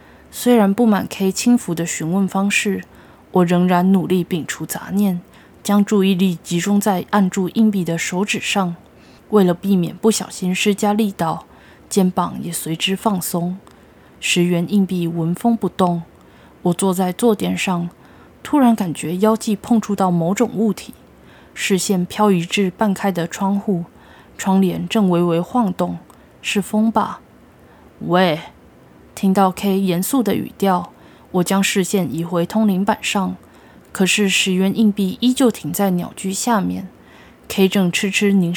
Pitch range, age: 175-210 Hz, 20-39